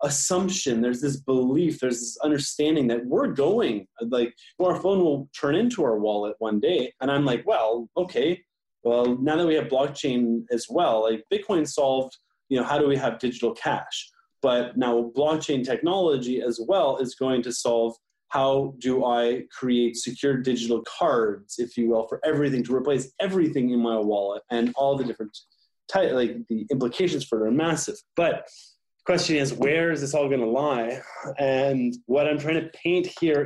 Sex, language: male, English